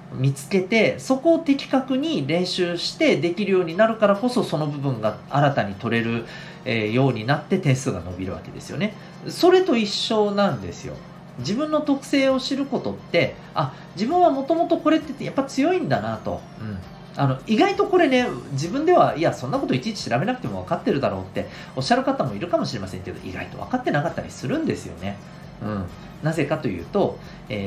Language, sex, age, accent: Japanese, male, 40-59, native